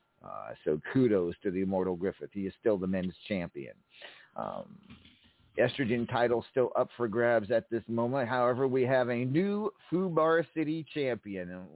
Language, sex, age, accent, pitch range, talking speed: English, male, 40-59, American, 105-145 Hz, 165 wpm